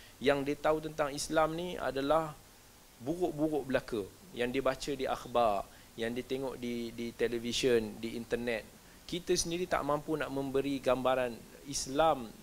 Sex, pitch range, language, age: male, 120-150 Hz, Malay, 20-39